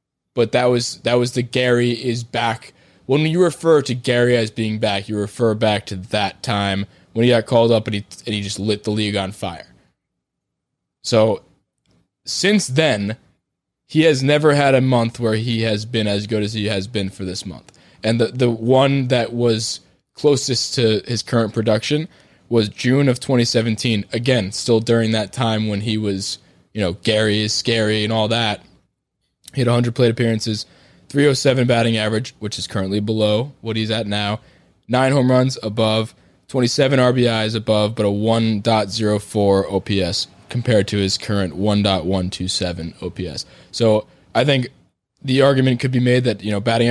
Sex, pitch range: male, 105-125 Hz